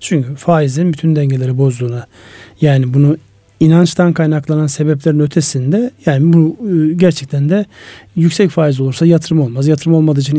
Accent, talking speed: native, 135 wpm